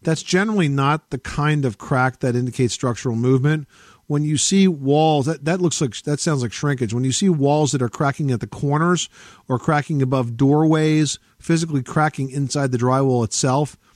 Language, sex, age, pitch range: English, male, 50-69, 120-145 Hz